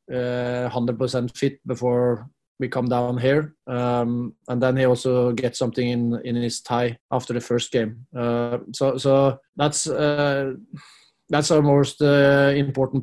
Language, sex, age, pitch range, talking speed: English, male, 20-39, 125-135 Hz, 150 wpm